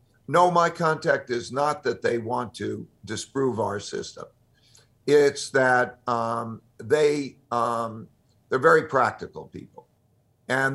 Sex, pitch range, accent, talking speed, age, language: male, 120-145 Hz, American, 125 wpm, 50-69, English